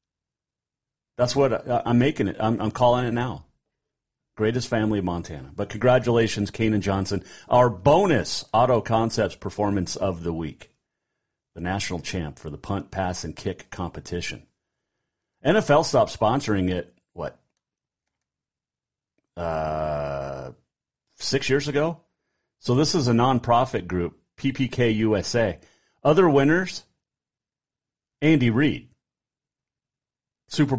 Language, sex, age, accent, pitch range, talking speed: English, male, 40-59, American, 95-130 Hz, 110 wpm